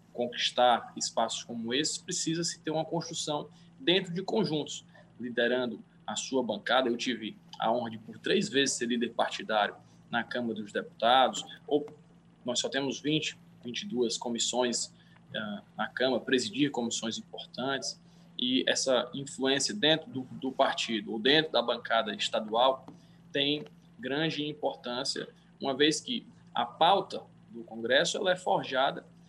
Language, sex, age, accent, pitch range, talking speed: Portuguese, male, 20-39, Brazilian, 125-170 Hz, 140 wpm